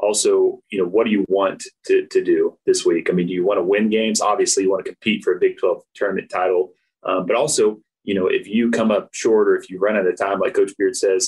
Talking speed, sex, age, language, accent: 275 wpm, male, 30-49, English, American